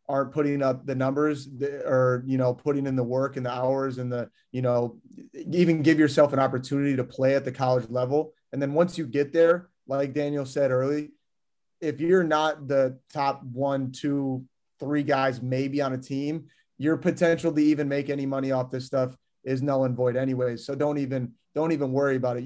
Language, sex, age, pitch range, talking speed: English, male, 30-49, 125-145 Hz, 205 wpm